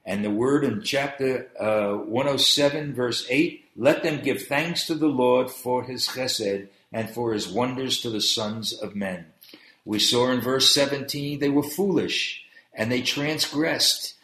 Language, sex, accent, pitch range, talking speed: English, male, American, 115-150 Hz, 165 wpm